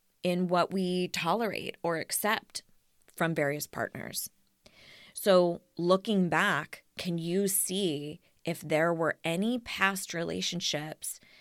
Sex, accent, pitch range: female, American, 155-185 Hz